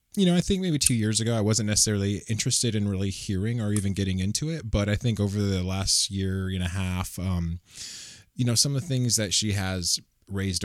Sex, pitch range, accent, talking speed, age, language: male, 90-110 Hz, American, 230 wpm, 20-39, English